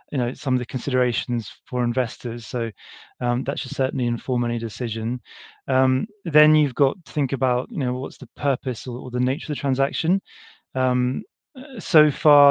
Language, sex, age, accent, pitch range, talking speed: English, male, 20-39, British, 125-145 Hz, 180 wpm